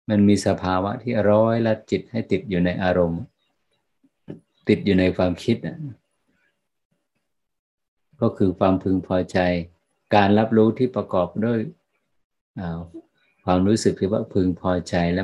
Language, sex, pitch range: Thai, male, 90-105 Hz